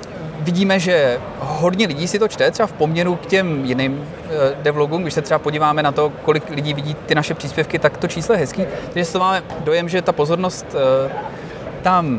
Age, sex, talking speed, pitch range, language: 30-49, male, 190 wpm, 135-180 Hz, Czech